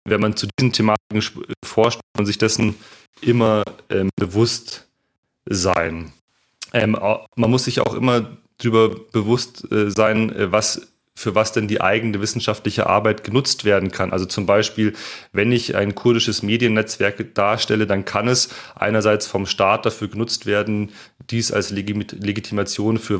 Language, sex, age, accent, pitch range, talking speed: German, male, 30-49, German, 105-120 Hz, 155 wpm